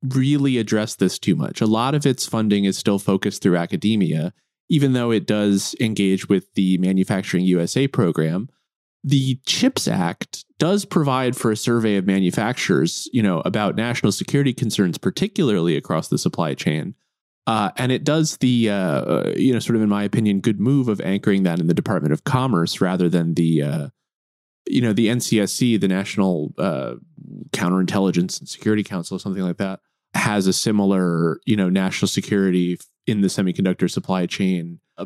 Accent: American